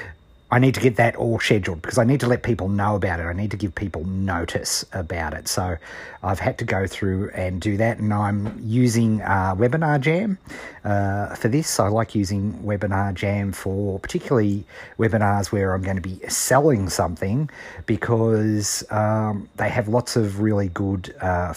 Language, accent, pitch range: English, Australian, 95-110 Hz